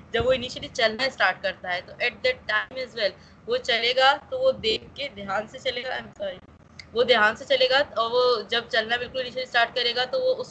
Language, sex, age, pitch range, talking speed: Urdu, female, 20-39, 215-255 Hz, 195 wpm